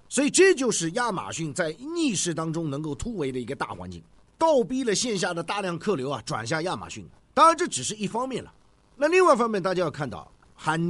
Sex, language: male, Chinese